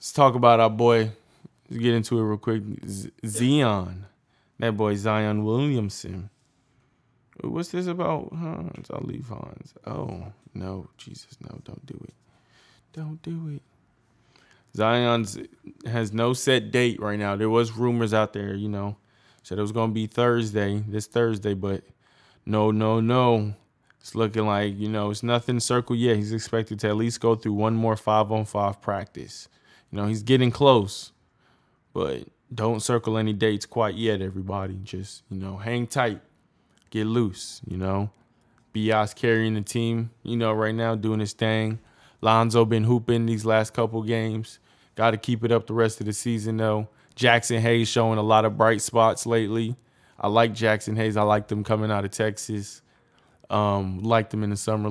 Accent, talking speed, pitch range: American, 175 wpm, 105-115 Hz